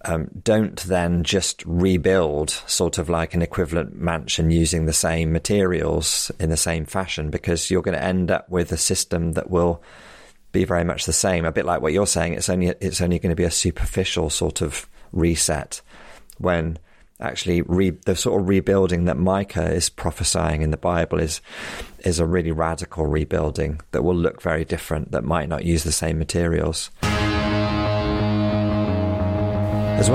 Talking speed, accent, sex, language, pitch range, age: 170 wpm, British, male, English, 80-105 Hz, 30-49